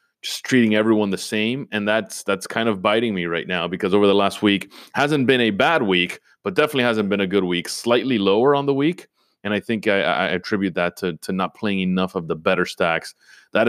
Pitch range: 90-120 Hz